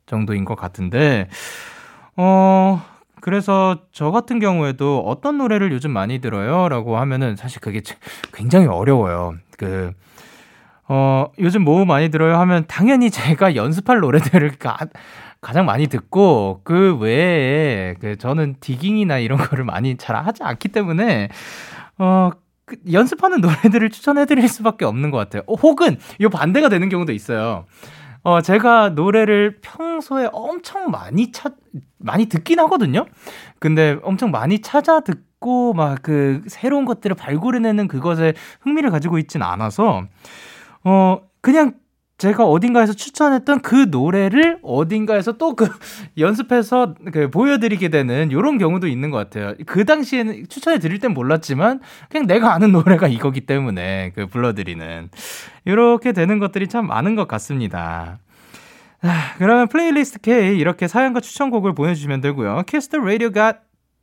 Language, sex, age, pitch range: Korean, male, 20-39, 140-230 Hz